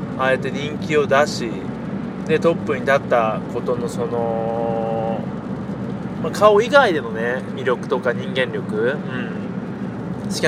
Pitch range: 145-210 Hz